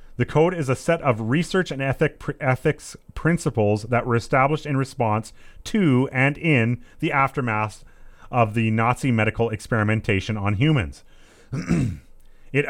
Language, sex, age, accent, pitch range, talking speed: English, male, 30-49, American, 110-145 Hz, 130 wpm